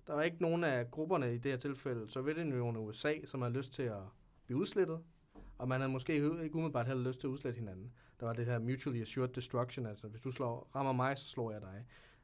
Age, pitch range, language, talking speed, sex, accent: 30-49, 120-150 Hz, English, 235 wpm, male, Danish